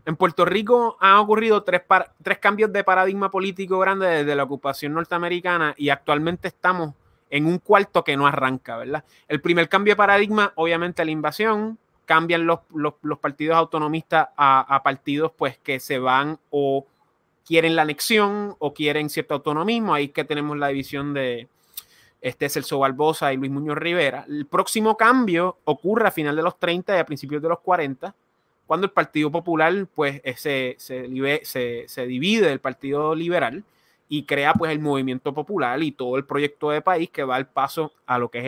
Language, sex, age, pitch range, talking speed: Spanish, male, 20-39, 145-185 Hz, 180 wpm